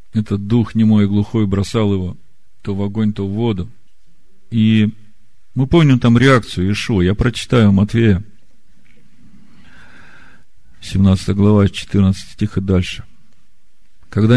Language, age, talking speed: Russian, 50-69, 120 wpm